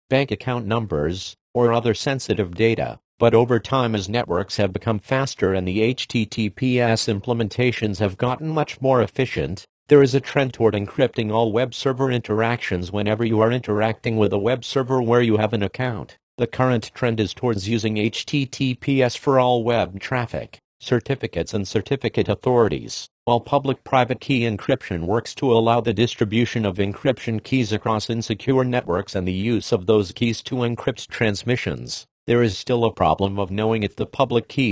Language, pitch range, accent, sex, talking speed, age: English, 105-125 Hz, American, male, 170 wpm, 50-69